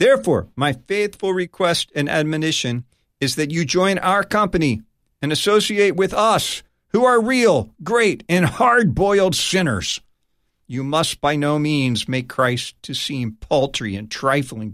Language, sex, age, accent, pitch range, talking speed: English, male, 50-69, American, 110-170 Hz, 145 wpm